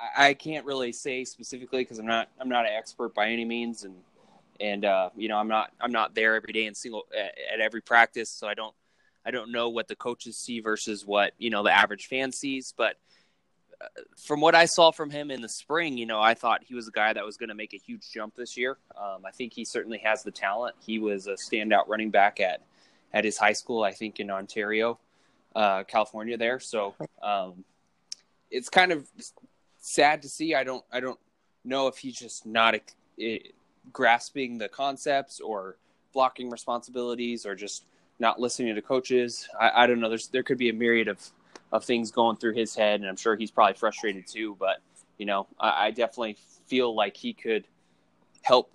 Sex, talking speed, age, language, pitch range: male, 210 wpm, 20-39, English, 105-125 Hz